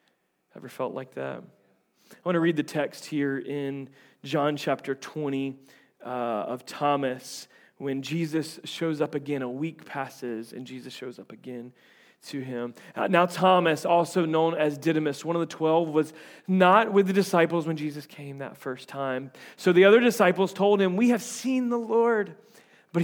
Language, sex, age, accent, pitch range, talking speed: English, male, 30-49, American, 150-205 Hz, 175 wpm